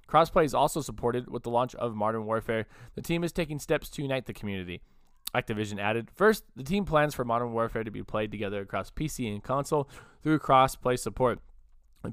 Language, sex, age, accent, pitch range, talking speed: English, male, 20-39, American, 110-150 Hz, 200 wpm